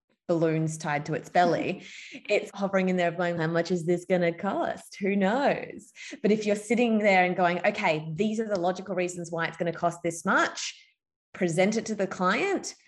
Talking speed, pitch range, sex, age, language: 205 wpm, 170-200 Hz, female, 20-39, English